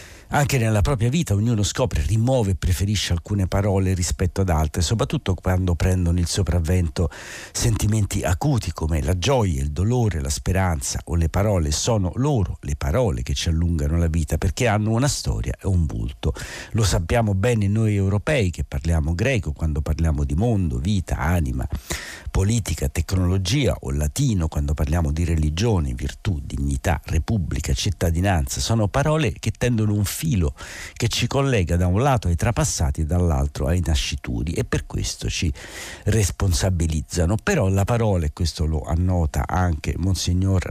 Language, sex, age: Italian, male, 60-79